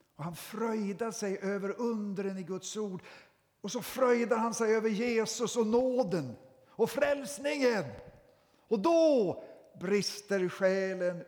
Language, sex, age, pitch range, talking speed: Swedish, male, 60-79, 140-200 Hz, 130 wpm